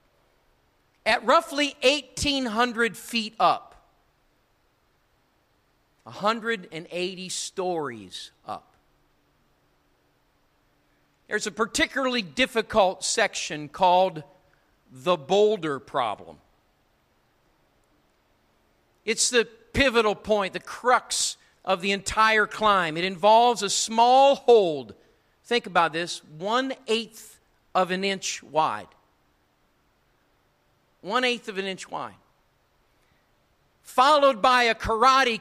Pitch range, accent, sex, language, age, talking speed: 135-225 Hz, American, male, English, 50-69, 85 wpm